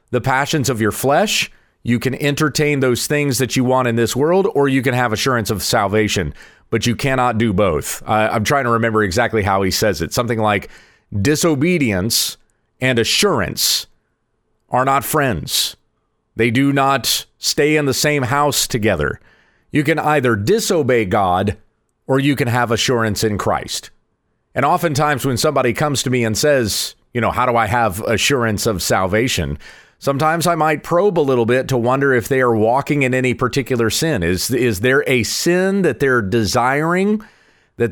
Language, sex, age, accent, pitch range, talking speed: English, male, 40-59, American, 110-145 Hz, 175 wpm